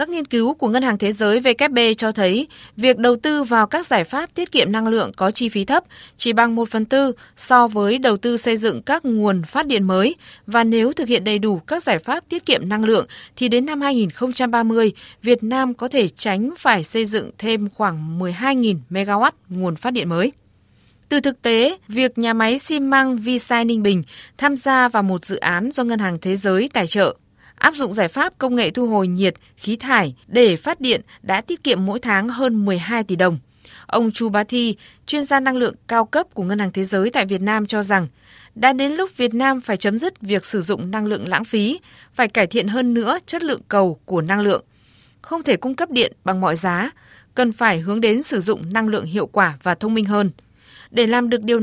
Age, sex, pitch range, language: 20-39, female, 200-250 Hz, Vietnamese